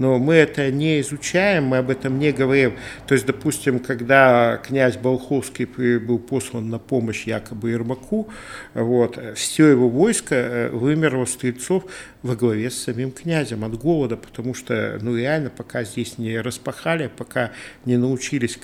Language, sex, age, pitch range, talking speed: Russian, male, 50-69, 115-140 Hz, 150 wpm